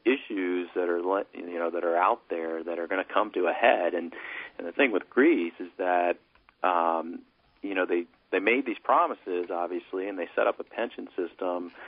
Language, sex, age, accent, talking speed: English, male, 40-59, American, 205 wpm